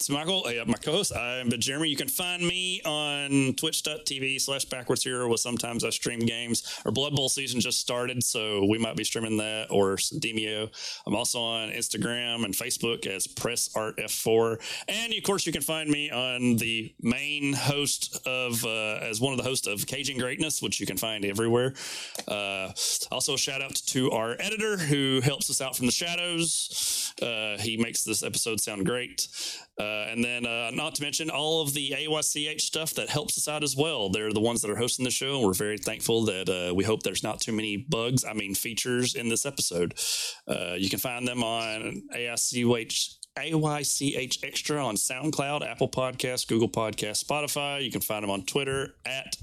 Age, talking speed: 30-49, 195 wpm